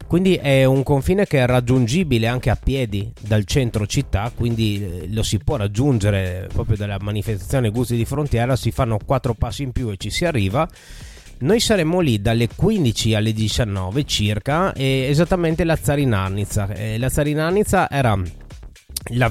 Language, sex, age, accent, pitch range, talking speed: Italian, male, 30-49, native, 105-135 Hz, 155 wpm